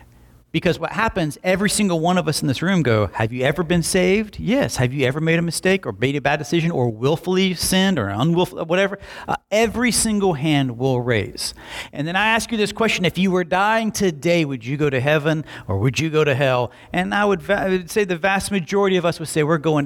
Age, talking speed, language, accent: 40-59, 235 wpm, English, American